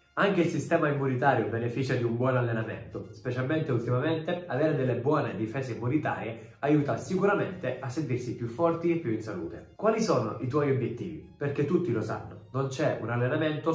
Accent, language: native, Italian